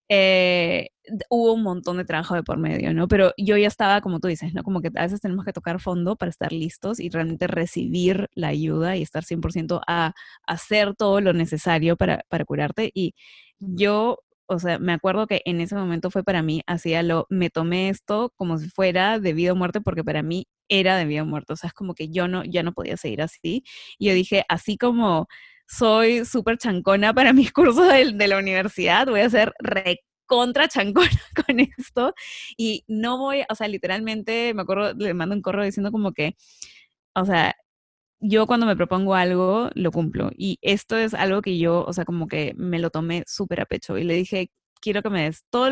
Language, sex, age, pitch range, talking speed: Spanish, female, 20-39, 170-215 Hz, 215 wpm